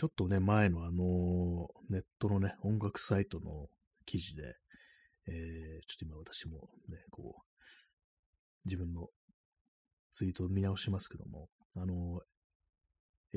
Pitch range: 85-110 Hz